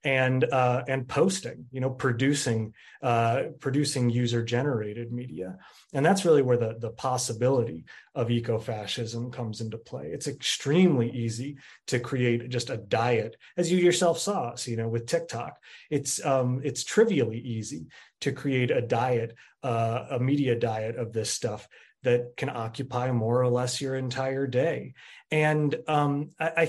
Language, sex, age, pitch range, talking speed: English, male, 30-49, 115-145 Hz, 155 wpm